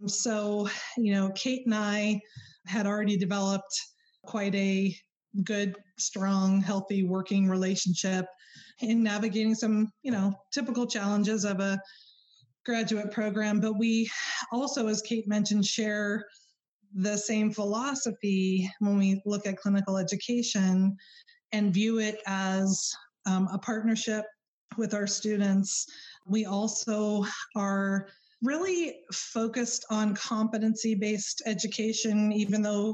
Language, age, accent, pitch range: English, 20-39, American, 195-225 Hz